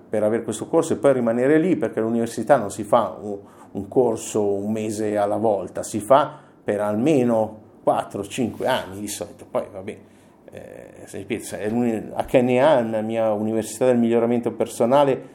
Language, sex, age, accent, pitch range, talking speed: Italian, male, 50-69, native, 105-125 Hz, 155 wpm